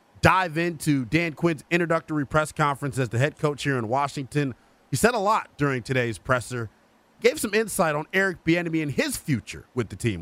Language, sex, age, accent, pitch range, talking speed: English, male, 30-49, American, 125-170 Hz, 195 wpm